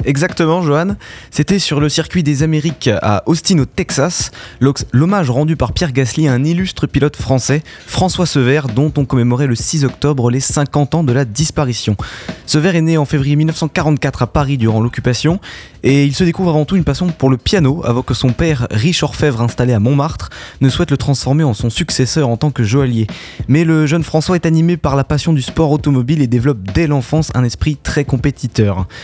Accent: French